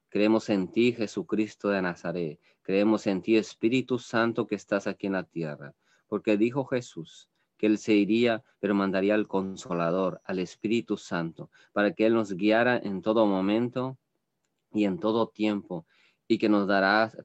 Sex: male